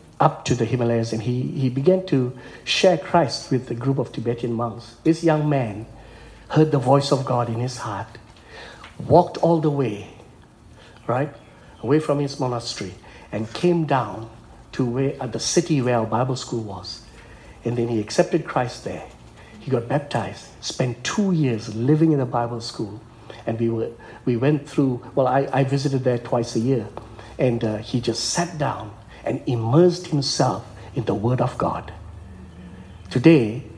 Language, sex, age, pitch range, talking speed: English, male, 60-79, 110-135 Hz, 170 wpm